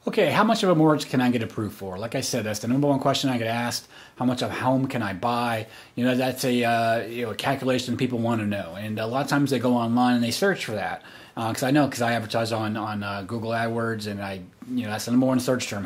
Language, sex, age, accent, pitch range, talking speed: English, male, 30-49, American, 115-135 Hz, 295 wpm